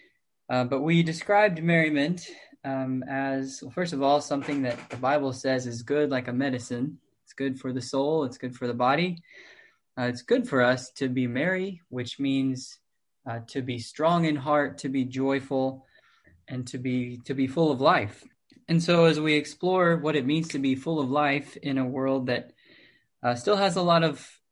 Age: 20-39